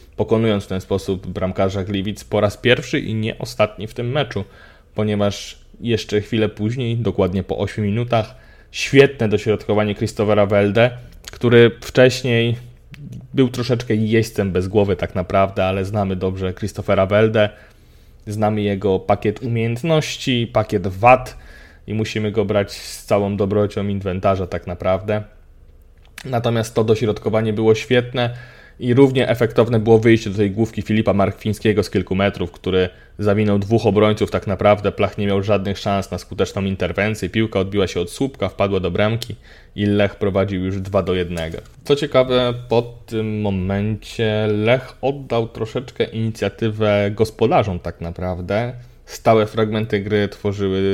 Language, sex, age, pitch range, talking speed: Polish, male, 20-39, 95-115 Hz, 140 wpm